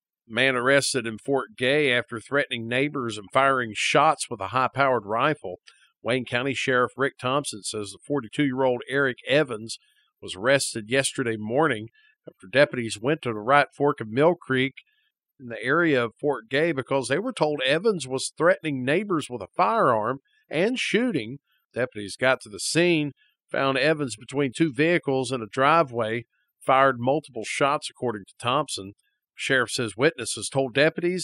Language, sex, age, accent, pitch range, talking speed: English, male, 50-69, American, 120-150 Hz, 160 wpm